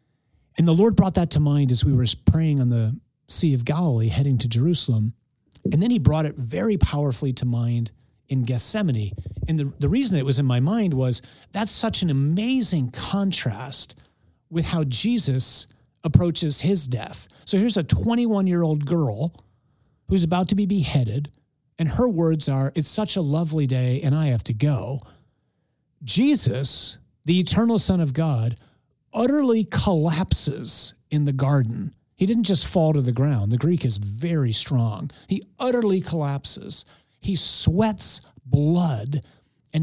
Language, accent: English, American